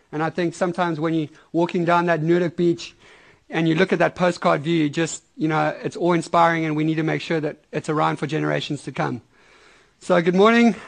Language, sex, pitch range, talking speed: English, male, 165-195 Hz, 215 wpm